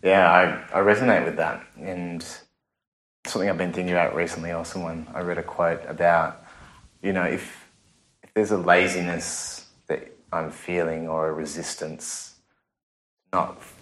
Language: English